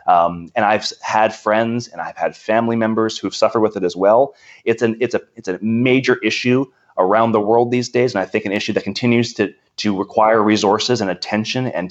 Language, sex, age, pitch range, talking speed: English, male, 30-49, 105-125 Hz, 215 wpm